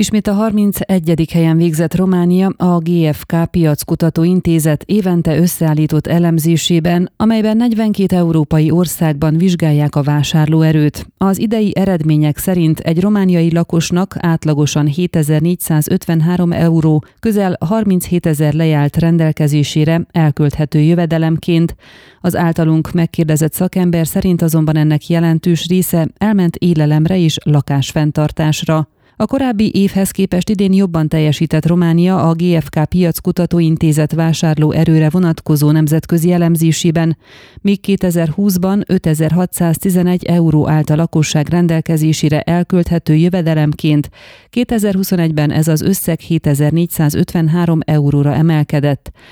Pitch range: 155-180 Hz